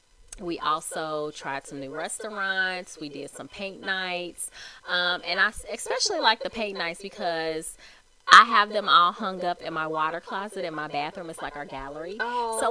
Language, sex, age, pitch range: English, female, 20-39, 155-215 Hz